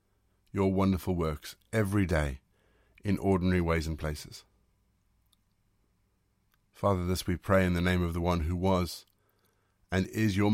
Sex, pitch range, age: male, 90-105 Hz, 50-69